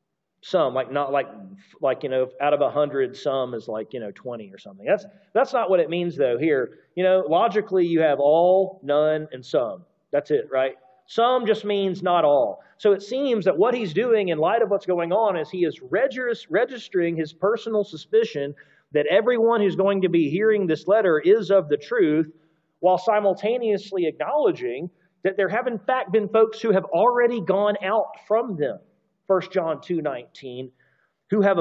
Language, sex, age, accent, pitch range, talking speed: English, male, 40-59, American, 160-220 Hz, 185 wpm